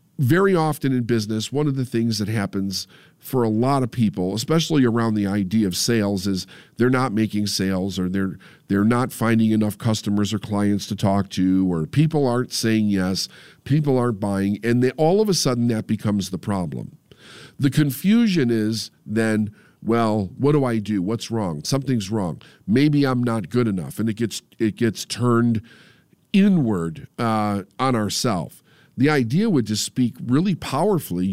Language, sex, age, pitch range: English, male, 50-69, 105-140 Hz